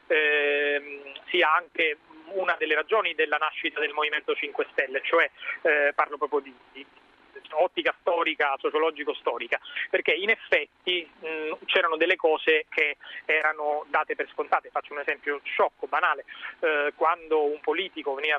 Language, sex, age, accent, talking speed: Italian, male, 30-49, native, 135 wpm